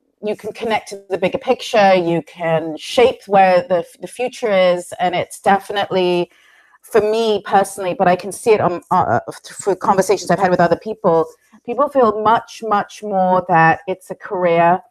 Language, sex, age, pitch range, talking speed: Portuguese, female, 30-49, 170-205 Hz, 180 wpm